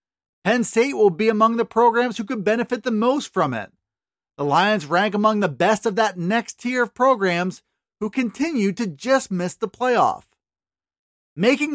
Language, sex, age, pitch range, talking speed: English, male, 40-59, 195-245 Hz, 175 wpm